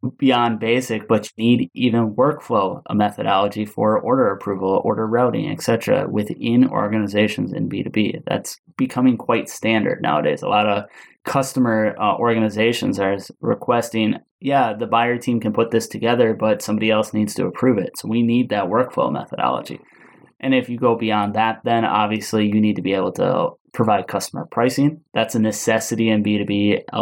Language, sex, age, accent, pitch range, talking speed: English, male, 20-39, American, 105-125 Hz, 170 wpm